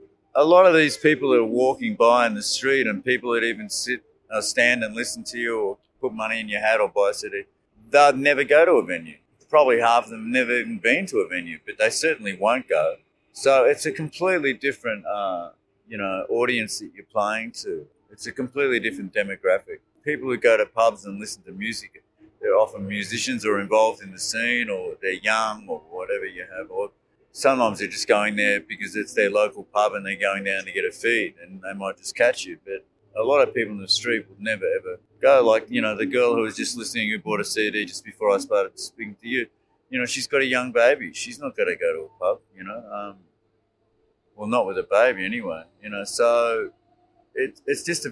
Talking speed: 230 wpm